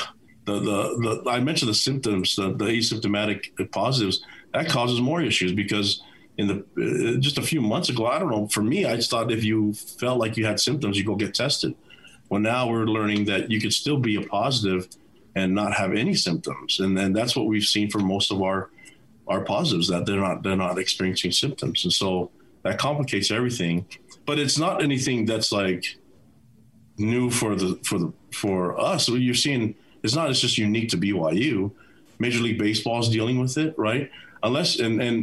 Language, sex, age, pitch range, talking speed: English, male, 40-59, 100-120 Hz, 200 wpm